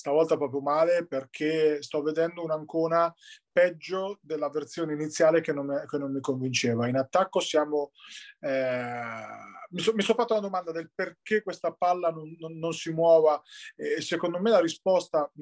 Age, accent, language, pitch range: 30-49, native, Italian, 145-185 Hz